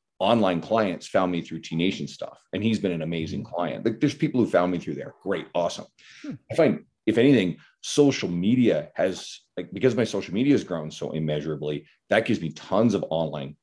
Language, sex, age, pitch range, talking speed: English, male, 30-49, 90-125 Hz, 205 wpm